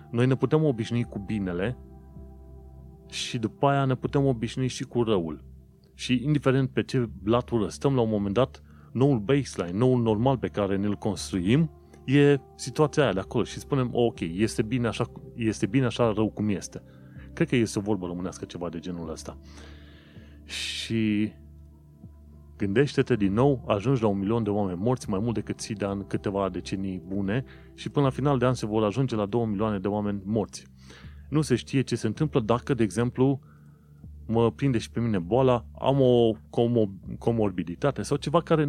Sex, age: male, 30-49